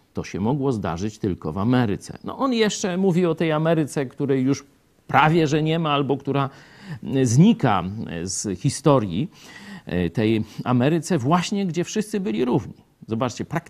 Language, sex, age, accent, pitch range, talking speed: Polish, male, 50-69, native, 110-175 Hz, 140 wpm